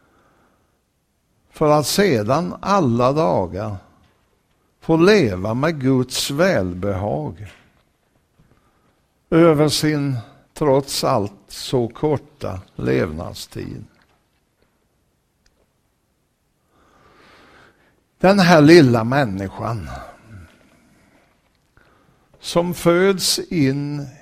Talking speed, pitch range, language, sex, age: 60 wpm, 105-155 Hz, Swedish, male, 60-79